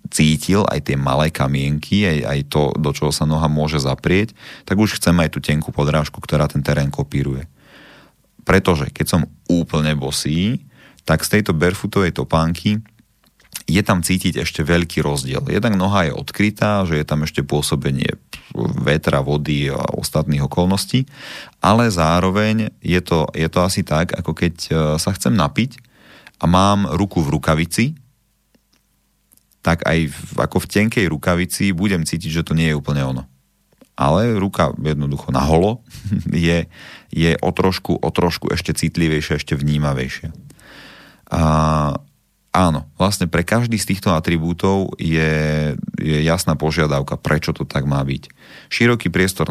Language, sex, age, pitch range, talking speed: Slovak, male, 30-49, 75-90 Hz, 145 wpm